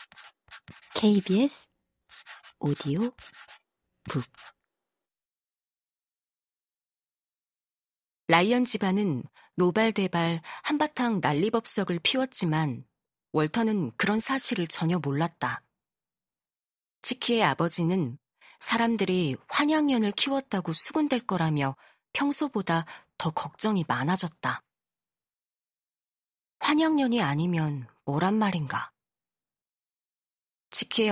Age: 40-59